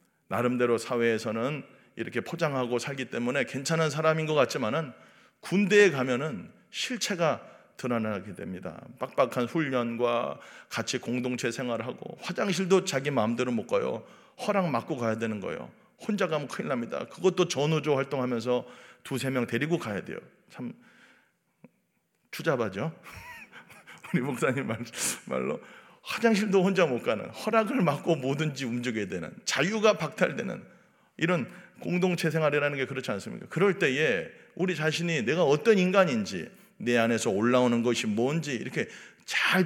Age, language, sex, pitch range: 40-59, Korean, male, 120-185 Hz